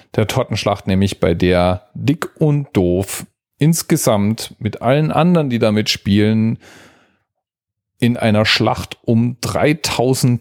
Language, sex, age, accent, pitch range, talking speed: German, male, 40-59, German, 95-125 Hz, 115 wpm